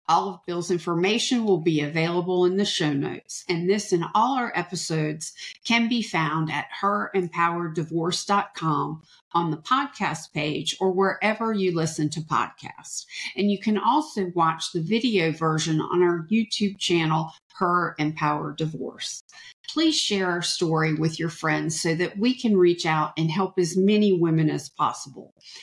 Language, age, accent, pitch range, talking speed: English, 50-69, American, 160-200 Hz, 155 wpm